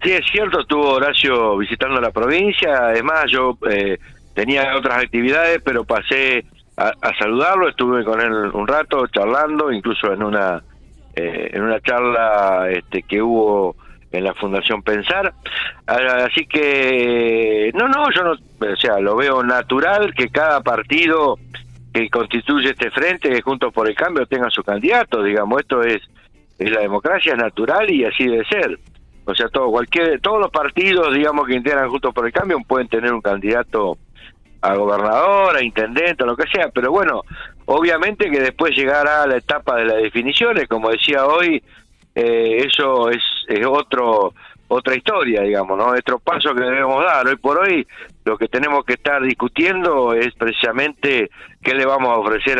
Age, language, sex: 60-79, Spanish, male